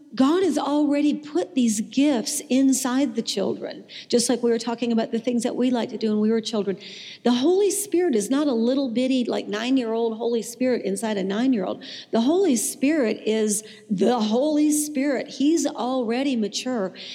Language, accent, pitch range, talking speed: English, American, 205-250 Hz, 180 wpm